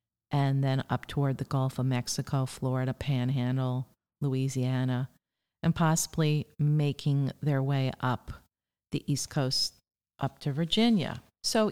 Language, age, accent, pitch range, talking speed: English, 50-69, American, 130-170 Hz, 125 wpm